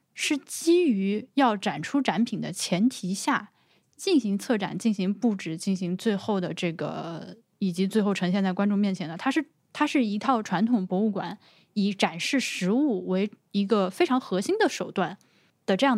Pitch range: 185-250 Hz